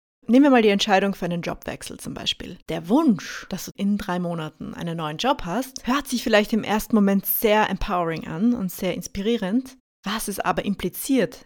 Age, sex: 20-39, female